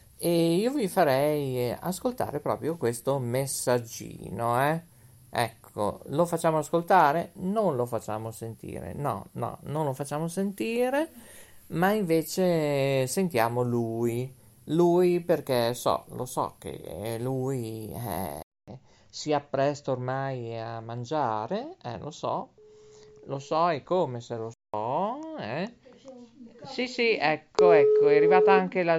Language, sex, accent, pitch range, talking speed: English, male, Italian, 125-180 Hz, 120 wpm